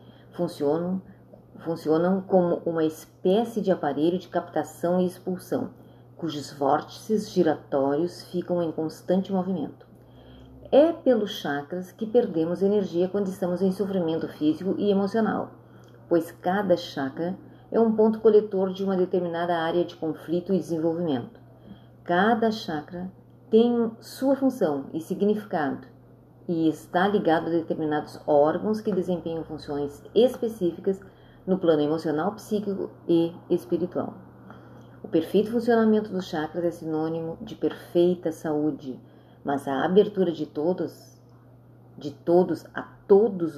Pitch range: 155-200 Hz